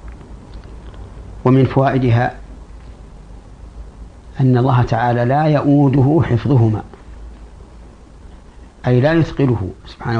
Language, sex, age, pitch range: Arabic, male, 50-69, 80-125 Hz